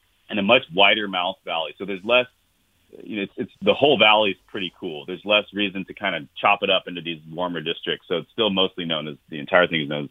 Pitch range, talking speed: 85-105 Hz, 255 wpm